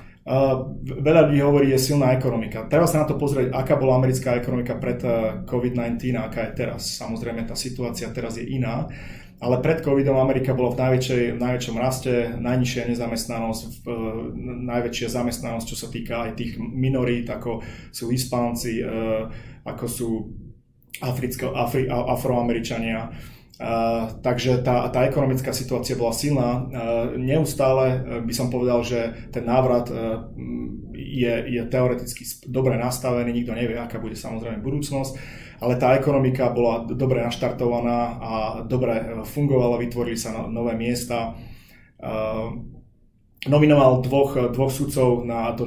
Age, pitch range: 20-39, 115-130 Hz